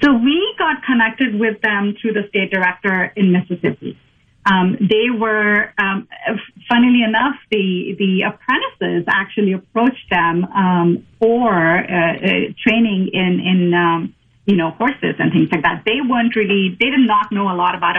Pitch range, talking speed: 180-220 Hz, 165 wpm